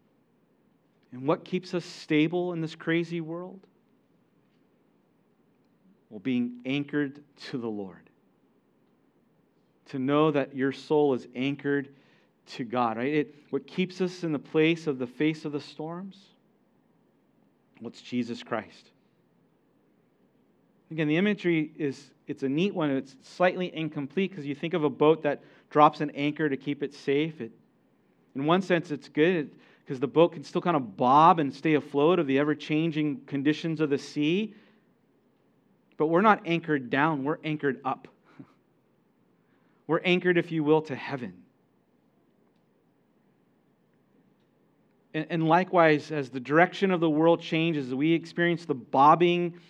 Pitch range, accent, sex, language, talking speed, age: 140-170 Hz, American, male, English, 145 wpm, 40-59